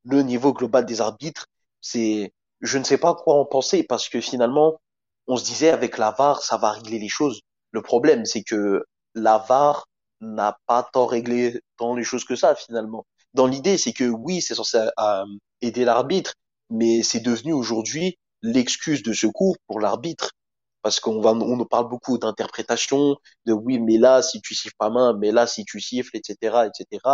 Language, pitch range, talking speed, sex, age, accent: French, 115-145 Hz, 190 wpm, male, 30-49, French